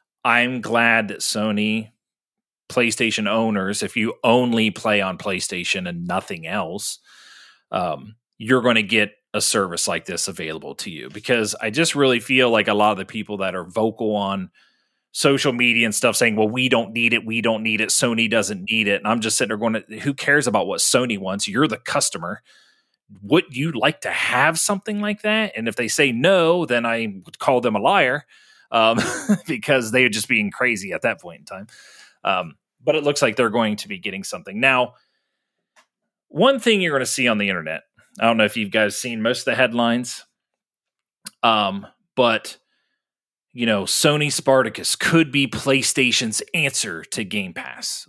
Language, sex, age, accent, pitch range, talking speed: English, male, 30-49, American, 110-140 Hz, 190 wpm